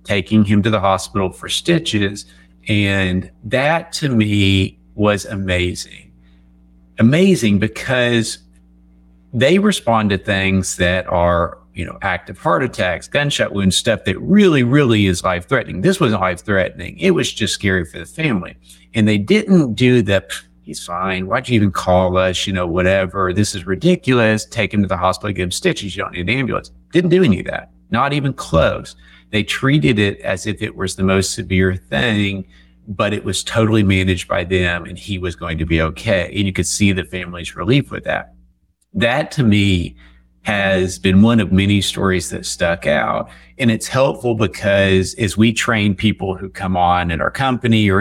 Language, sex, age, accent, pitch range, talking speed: English, male, 50-69, American, 90-110 Hz, 180 wpm